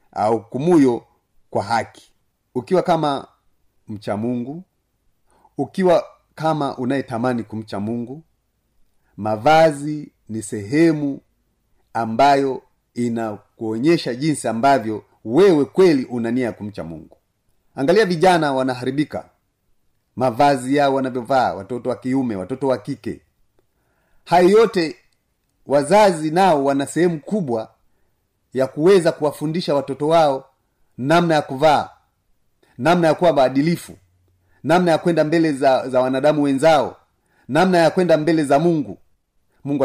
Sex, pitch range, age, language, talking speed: male, 110-155 Hz, 40-59, Swahili, 105 wpm